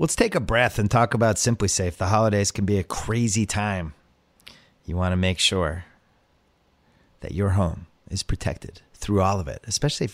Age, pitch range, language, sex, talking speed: 30-49, 90-115 Hz, English, male, 190 wpm